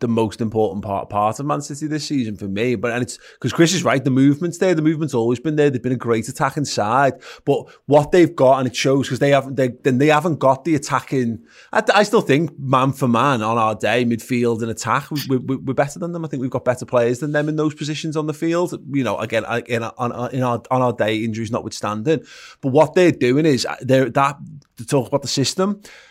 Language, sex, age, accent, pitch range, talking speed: English, male, 20-39, British, 125-155 Hz, 250 wpm